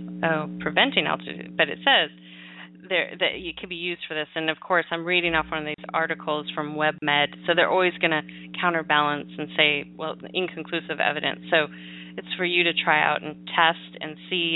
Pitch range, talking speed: 150-175 Hz, 200 wpm